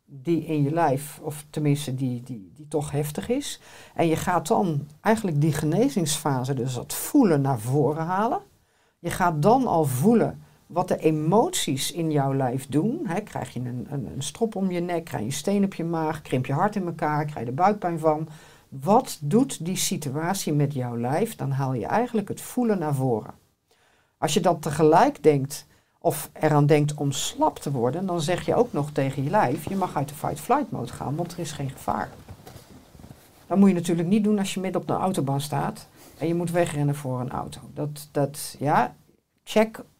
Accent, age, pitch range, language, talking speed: Dutch, 50-69, 145-195 Hz, Dutch, 200 wpm